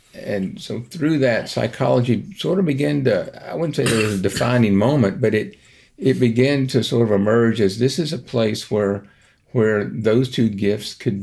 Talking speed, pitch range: 190 wpm, 100-120 Hz